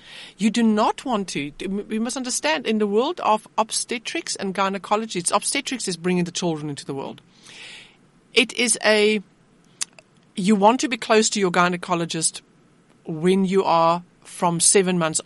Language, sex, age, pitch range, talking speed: English, female, 50-69, 170-210 Hz, 160 wpm